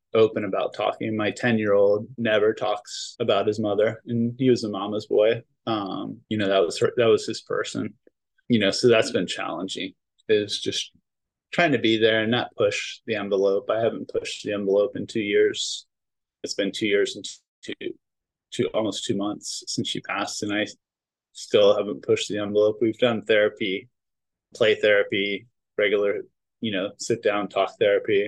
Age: 20-39